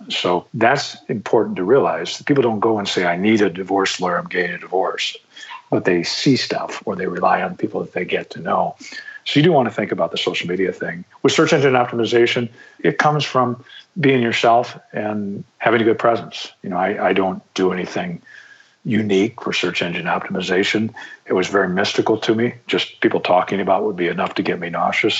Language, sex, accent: English, male, American